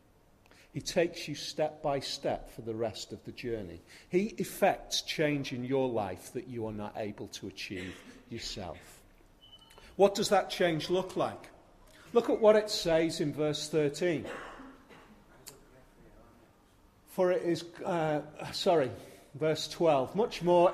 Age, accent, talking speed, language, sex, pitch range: 40-59, British, 140 wpm, English, male, 130-175 Hz